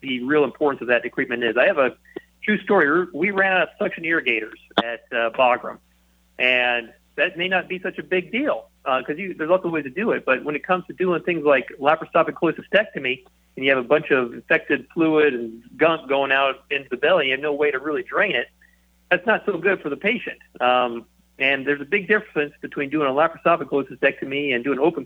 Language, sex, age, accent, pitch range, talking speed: English, male, 40-59, American, 125-165 Hz, 225 wpm